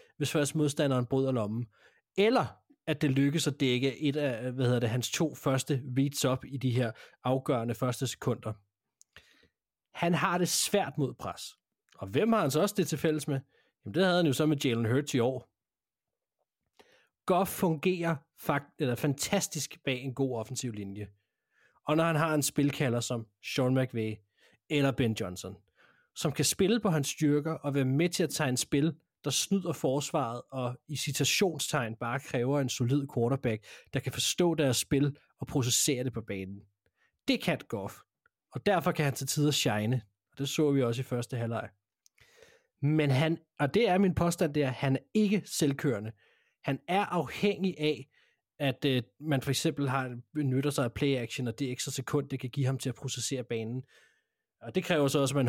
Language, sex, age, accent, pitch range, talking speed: Danish, male, 30-49, native, 125-155 Hz, 190 wpm